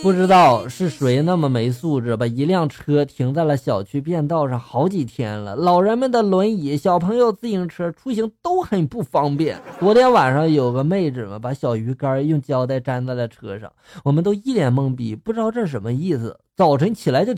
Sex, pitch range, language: male, 125-190 Hz, Chinese